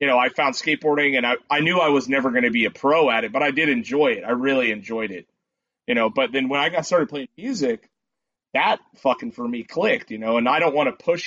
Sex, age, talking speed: male, 30-49, 270 wpm